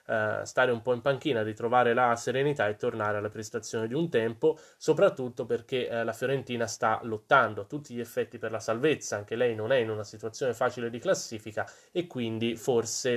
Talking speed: 185 wpm